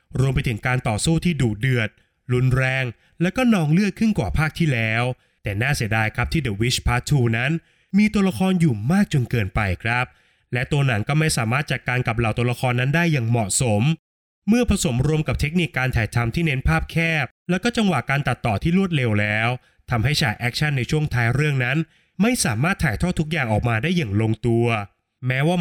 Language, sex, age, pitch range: Thai, male, 20-39, 120-165 Hz